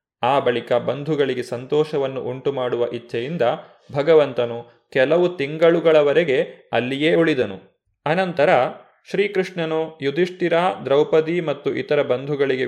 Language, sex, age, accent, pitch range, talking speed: Kannada, male, 30-49, native, 135-175 Hz, 85 wpm